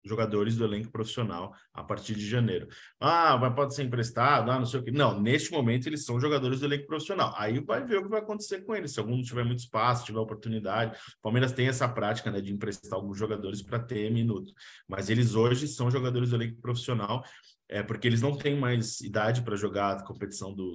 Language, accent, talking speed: Portuguese, Brazilian, 220 wpm